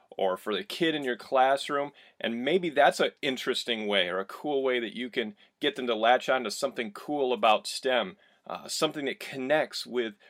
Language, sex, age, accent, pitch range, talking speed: English, male, 40-59, American, 115-150 Hz, 205 wpm